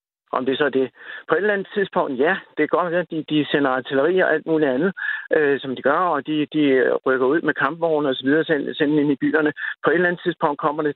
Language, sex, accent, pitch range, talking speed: Danish, male, native, 125-155 Hz, 275 wpm